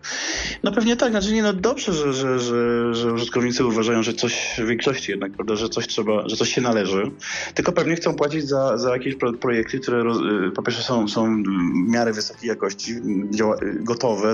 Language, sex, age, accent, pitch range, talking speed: Polish, male, 20-39, native, 105-125 Hz, 190 wpm